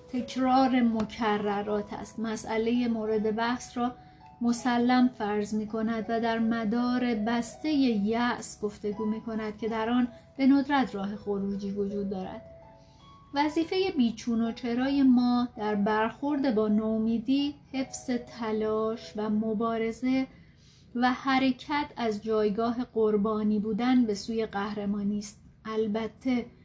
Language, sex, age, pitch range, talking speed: Persian, female, 30-49, 215-245 Hz, 115 wpm